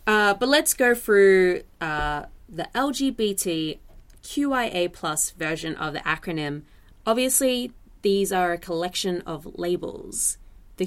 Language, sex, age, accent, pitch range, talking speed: English, female, 20-39, Australian, 155-195 Hz, 115 wpm